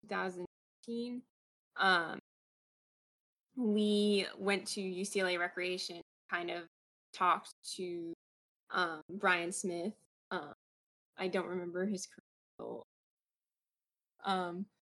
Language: English